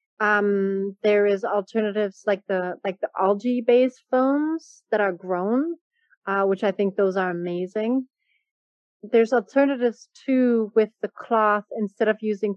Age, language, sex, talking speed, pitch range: 30-49, English, female, 145 wpm, 210-260 Hz